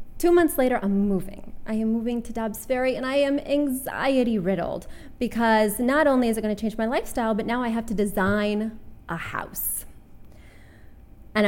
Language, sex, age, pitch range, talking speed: English, female, 20-39, 200-265 Hz, 180 wpm